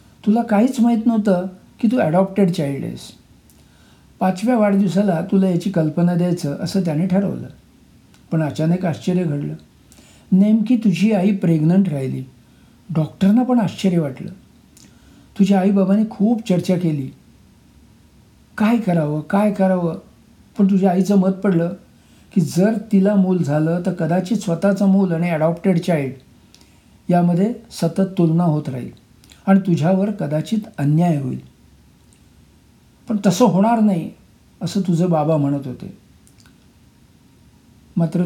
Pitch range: 160-200 Hz